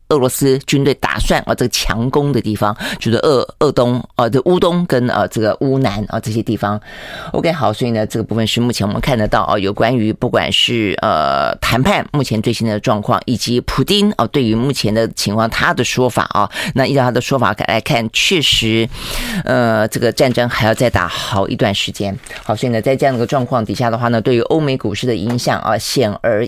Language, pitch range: Chinese, 110-130 Hz